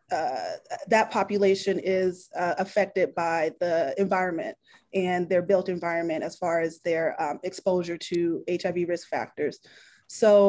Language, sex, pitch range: English, female, 185-220 Hz